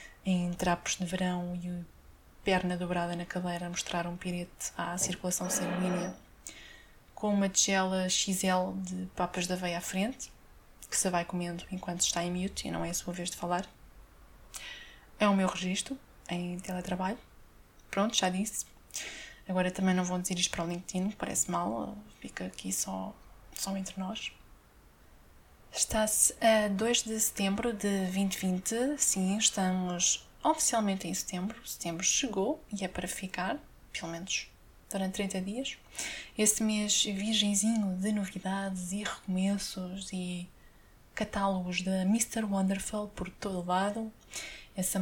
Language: Portuguese